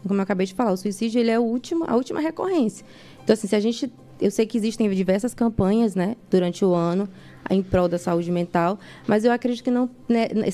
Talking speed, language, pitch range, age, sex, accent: 230 wpm, Portuguese, 205-255 Hz, 20-39, female, Brazilian